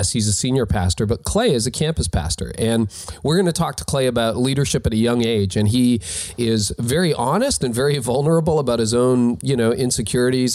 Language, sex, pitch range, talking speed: English, male, 100-120 Hz, 210 wpm